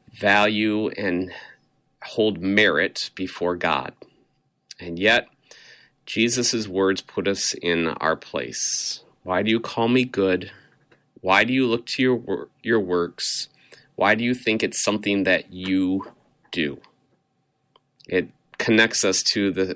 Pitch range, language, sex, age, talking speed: 100-125 Hz, English, male, 30-49, 130 wpm